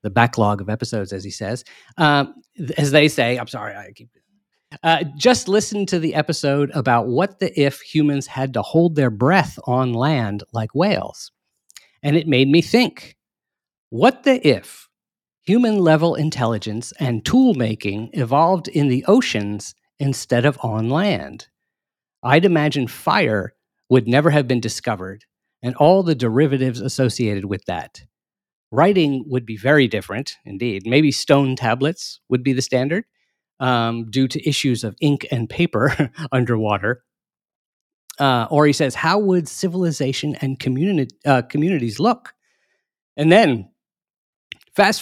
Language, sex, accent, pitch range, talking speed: English, male, American, 115-155 Hz, 140 wpm